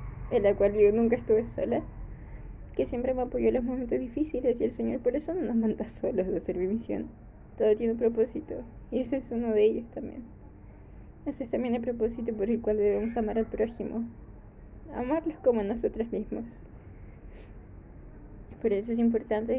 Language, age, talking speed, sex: Spanish, 10-29, 185 wpm, female